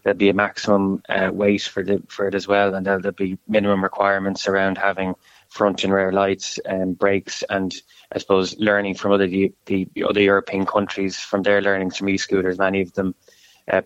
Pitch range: 95-105 Hz